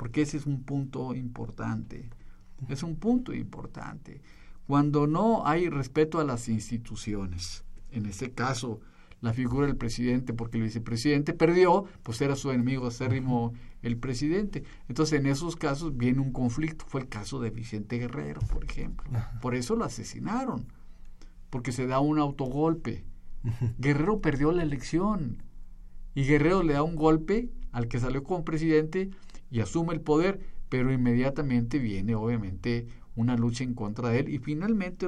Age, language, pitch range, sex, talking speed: 50-69, Spanish, 115-155 Hz, male, 155 wpm